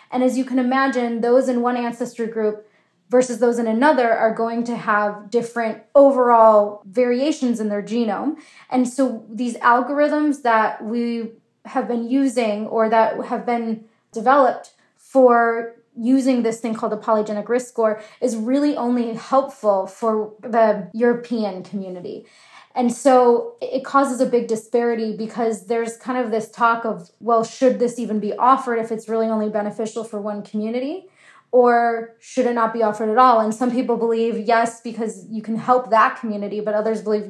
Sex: female